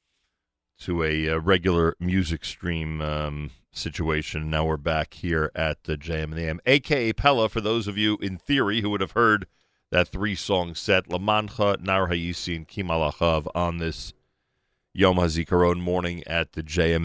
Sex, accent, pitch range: male, American, 85-100 Hz